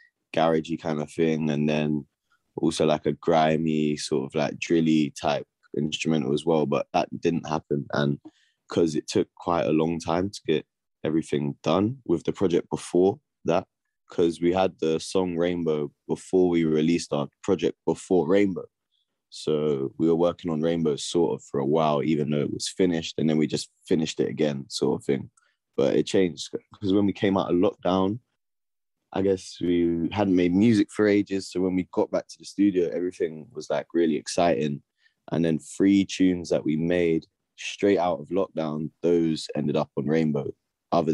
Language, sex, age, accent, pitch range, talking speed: English, male, 20-39, British, 75-90 Hz, 185 wpm